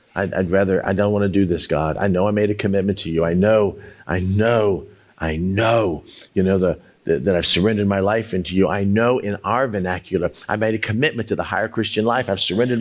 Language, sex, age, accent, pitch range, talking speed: English, male, 40-59, American, 100-135 Hz, 240 wpm